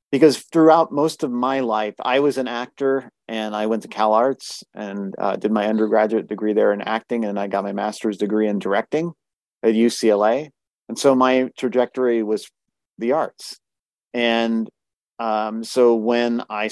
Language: English